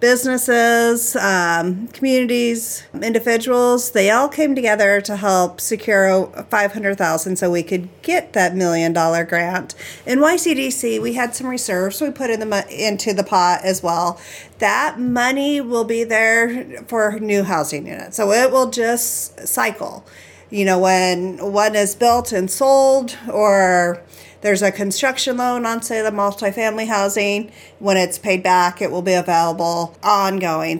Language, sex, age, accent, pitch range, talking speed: English, female, 40-59, American, 190-240 Hz, 150 wpm